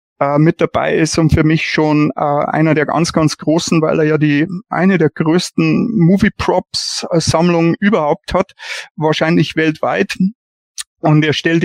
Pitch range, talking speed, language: 150-175 Hz, 140 wpm, German